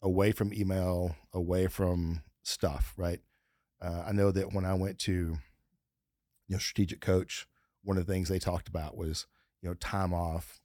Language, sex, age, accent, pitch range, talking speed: English, male, 40-59, American, 85-100 Hz, 175 wpm